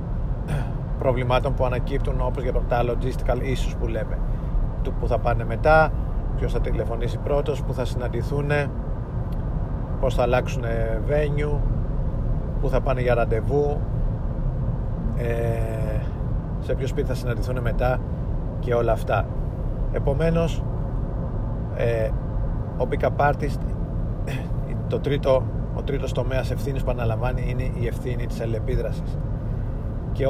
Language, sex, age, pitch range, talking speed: Greek, male, 40-59, 115-135 Hz, 110 wpm